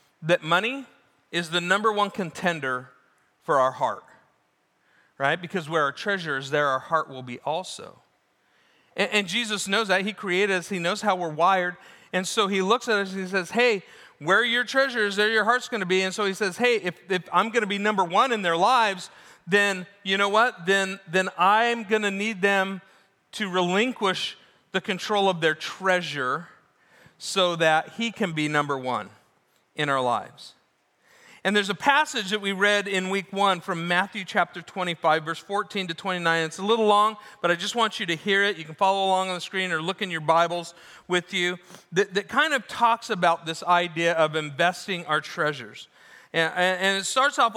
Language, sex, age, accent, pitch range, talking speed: English, male, 40-59, American, 175-210 Hz, 200 wpm